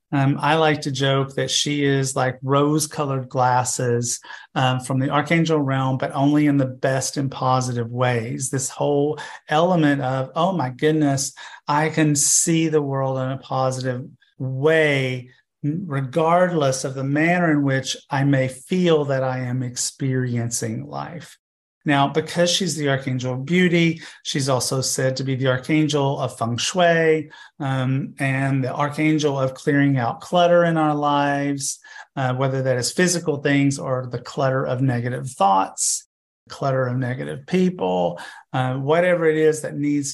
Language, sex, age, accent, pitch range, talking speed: English, male, 40-59, American, 130-150 Hz, 155 wpm